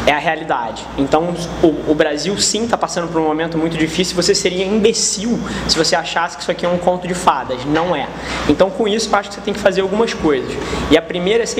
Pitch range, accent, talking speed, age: 155-205 Hz, Brazilian, 245 wpm, 20-39